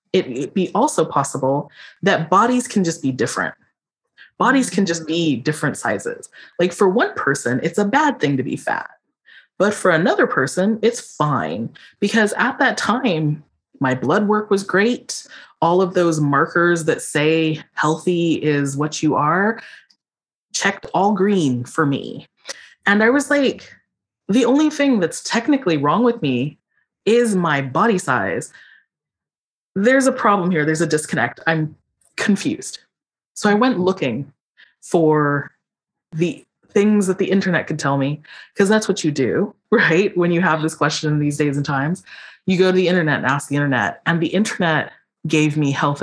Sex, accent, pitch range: female, American, 150-205 Hz